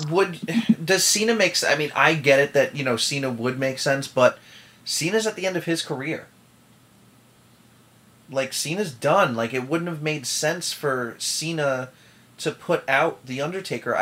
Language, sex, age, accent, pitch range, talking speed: English, male, 30-49, American, 125-160 Hz, 175 wpm